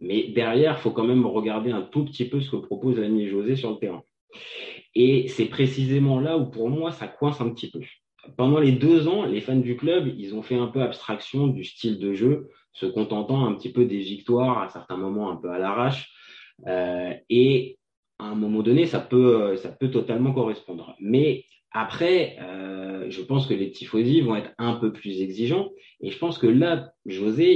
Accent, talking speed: French, 205 wpm